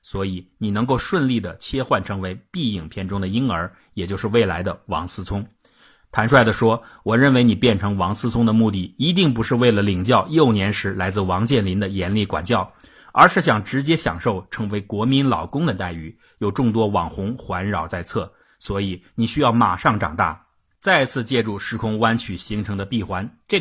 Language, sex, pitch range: Chinese, male, 95-120 Hz